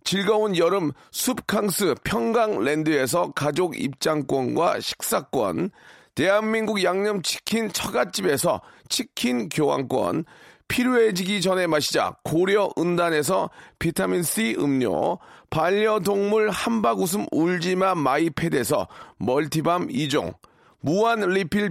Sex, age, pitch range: male, 40-59, 165-215 Hz